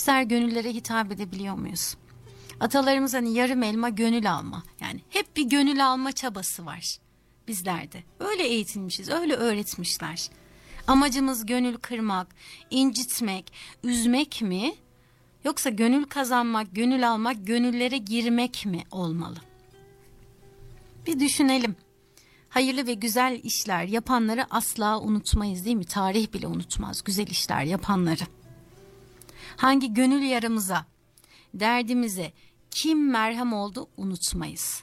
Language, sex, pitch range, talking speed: Turkish, female, 175-250 Hz, 110 wpm